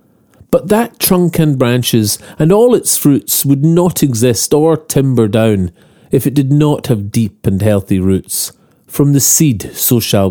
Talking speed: 170 wpm